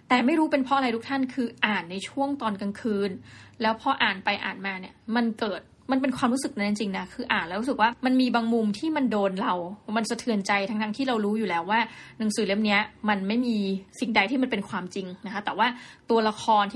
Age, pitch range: 20-39, 205-255 Hz